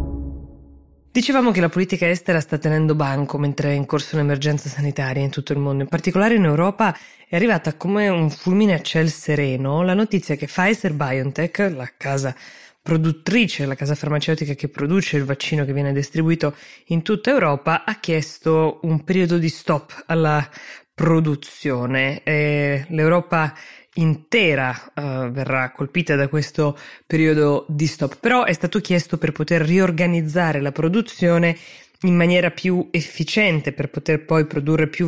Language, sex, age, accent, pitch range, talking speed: Italian, female, 20-39, native, 145-175 Hz, 145 wpm